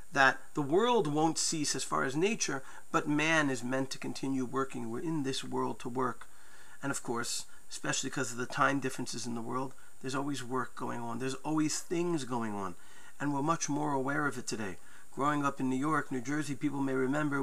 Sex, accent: male, American